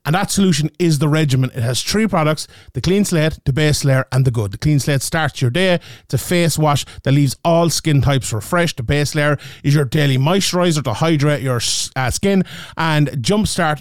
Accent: Irish